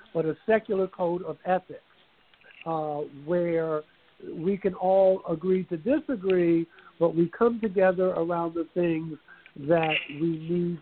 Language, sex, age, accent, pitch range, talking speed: English, male, 60-79, American, 160-195 Hz, 135 wpm